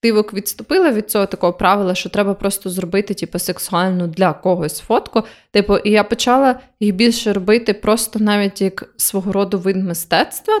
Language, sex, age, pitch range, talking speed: Ukrainian, female, 20-39, 190-235 Hz, 160 wpm